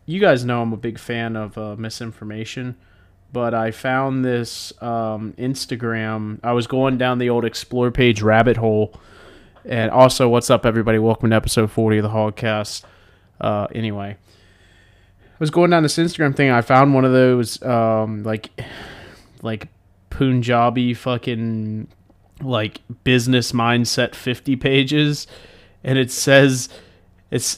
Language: English